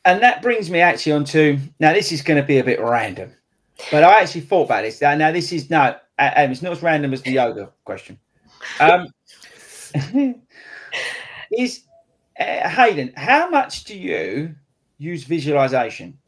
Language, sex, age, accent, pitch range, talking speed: English, male, 30-49, British, 130-175 Hz, 160 wpm